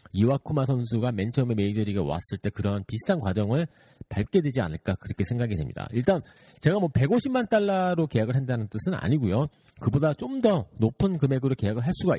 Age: 40-59